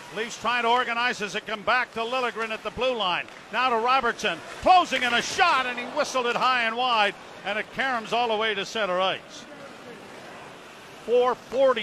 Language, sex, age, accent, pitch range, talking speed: English, male, 50-69, American, 205-255 Hz, 195 wpm